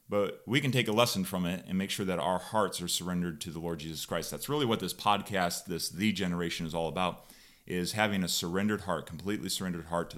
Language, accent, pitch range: English, American, 90-120 Hz